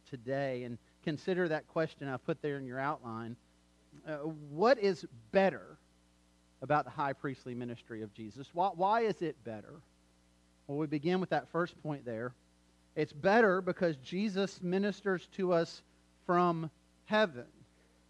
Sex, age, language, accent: male, 40-59, English, American